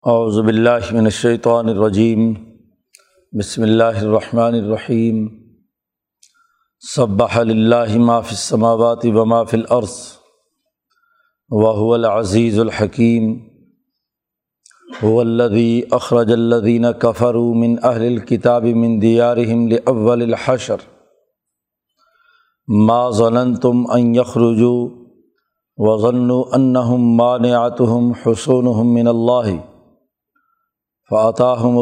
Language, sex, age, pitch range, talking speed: Urdu, male, 50-69, 115-125 Hz, 70 wpm